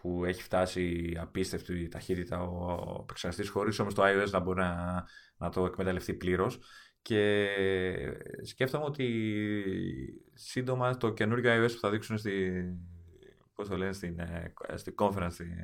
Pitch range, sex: 90-125 Hz, male